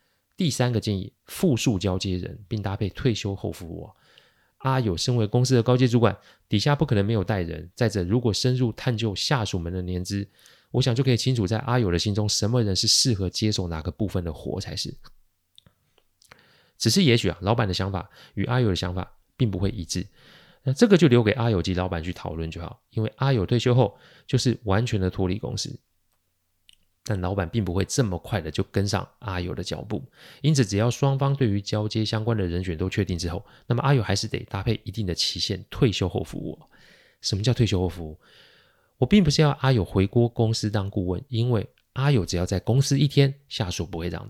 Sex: male